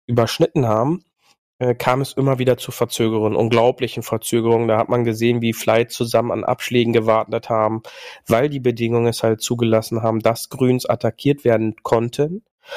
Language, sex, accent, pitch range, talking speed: German, male, German, 115-135 Hz, 160 wpm